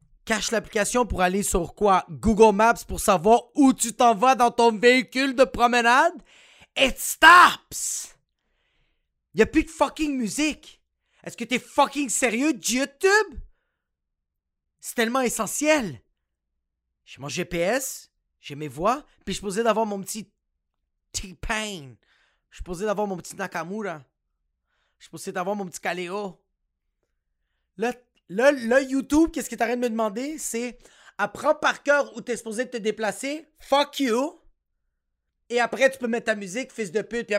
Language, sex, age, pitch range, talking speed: French, male, 30-49, 175-260 Hz, 155 wpm